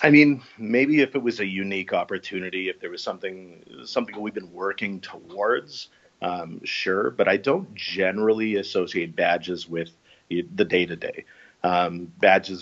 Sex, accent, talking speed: male, American, 150 wpm